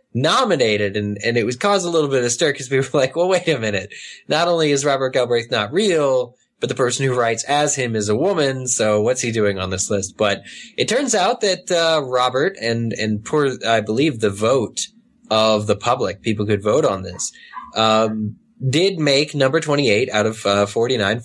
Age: 20-39